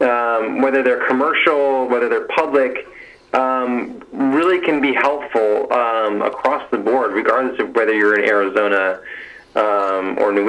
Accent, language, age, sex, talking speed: American, English, 30-49, male, 145 wpm